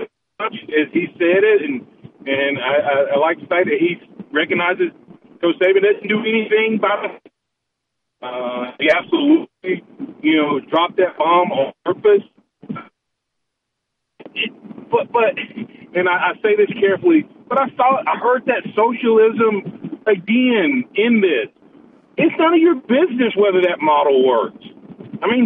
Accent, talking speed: American, 145 wpm